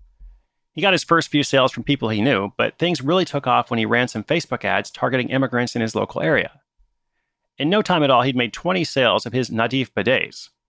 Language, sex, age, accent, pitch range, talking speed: English, male, 30-49, American, 120-150 Hz, 225 wpm